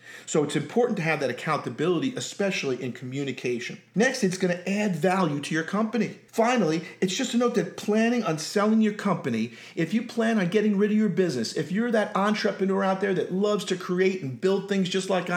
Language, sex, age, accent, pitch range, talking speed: English, male, 40-59, American, 145-210 Hz, 210 wpm